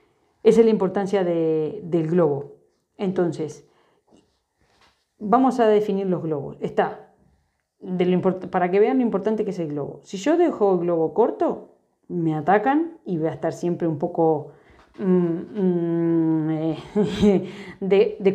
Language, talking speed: Spanish, 135 wpm